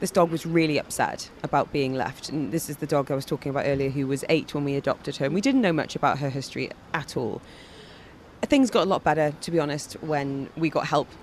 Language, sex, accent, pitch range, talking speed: English, female, British, 140-200 Hz, 250 wpm